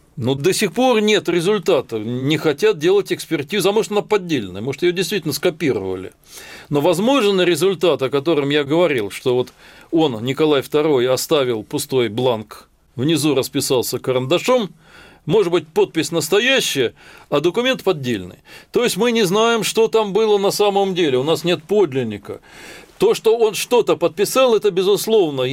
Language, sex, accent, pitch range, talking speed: Russian, male, native, 130-205 Hz, 155 wpm